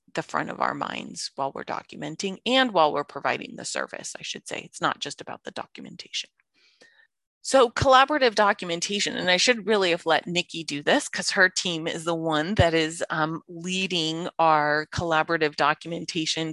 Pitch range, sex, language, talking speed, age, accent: 160-195 Hz, female, English, 175 wpm, 30-49, American